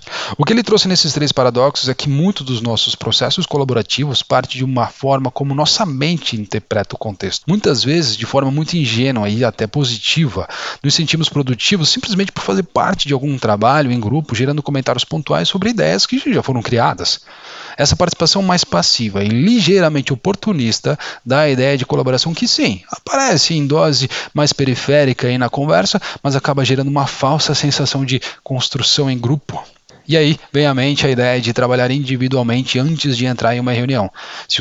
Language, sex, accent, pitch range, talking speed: Portuguese, male, Brazilian, 120-155 Hz, 180 wpm